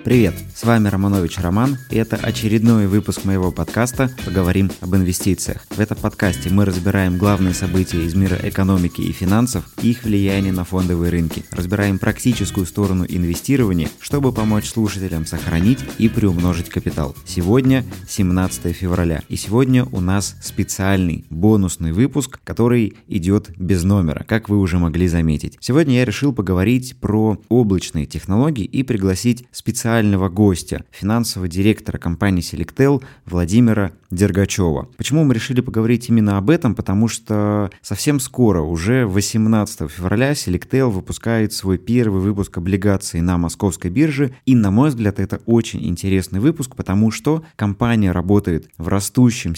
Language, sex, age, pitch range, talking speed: Russian, male, 20-39, 95-115 Hz, 140 wpm